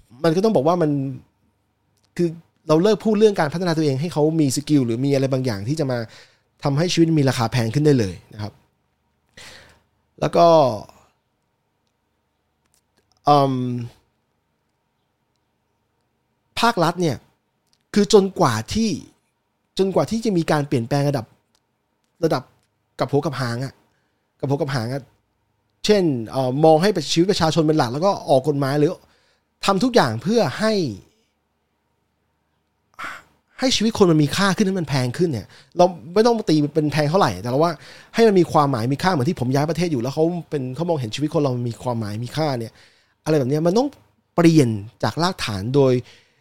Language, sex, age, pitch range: Thai, male, 20-39, 115-170 Hz